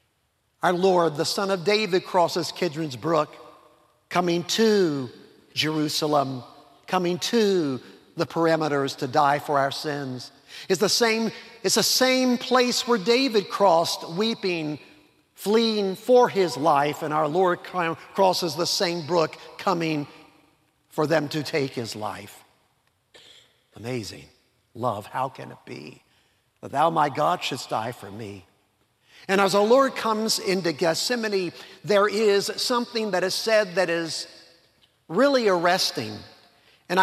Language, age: English, 50-69